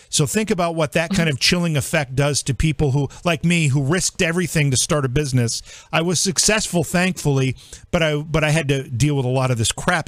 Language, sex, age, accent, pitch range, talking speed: English, male, 50-69, American, 125-170 Hz, 230 wpm